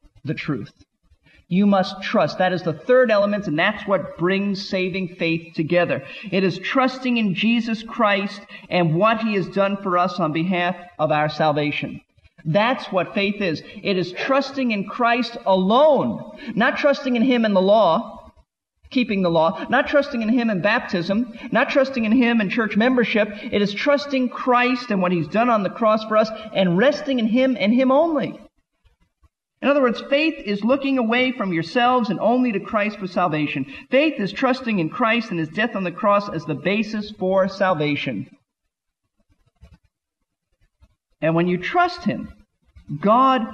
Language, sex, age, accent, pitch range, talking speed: English, male, 40-59, American, 175-240 Hz, 170 wpm